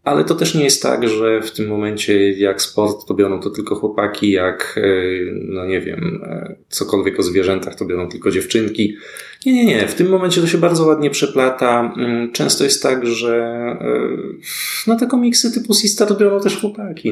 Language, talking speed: Polish, 180 wpm